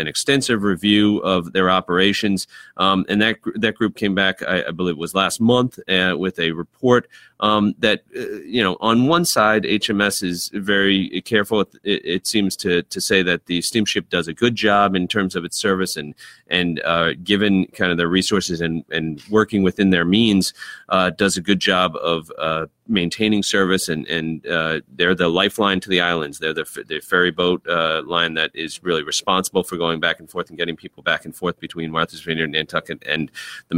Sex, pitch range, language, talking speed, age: male, 85-105 Hz, English, 205 wpm, 30-49